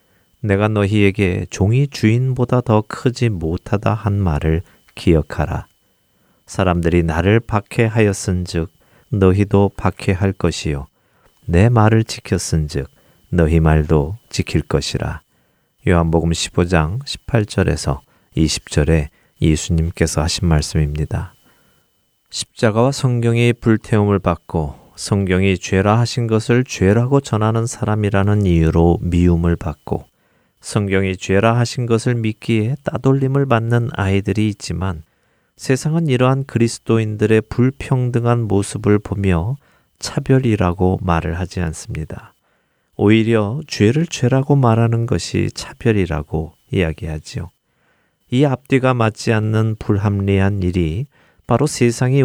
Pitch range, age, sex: 85-115 Hz, 40-59, male